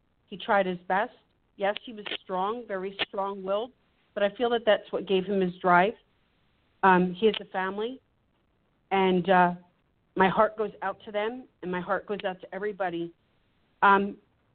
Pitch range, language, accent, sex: 185-225 Hz, English, American, female